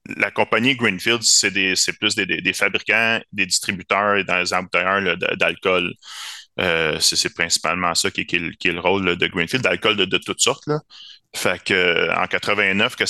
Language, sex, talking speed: French, male, 150 wpm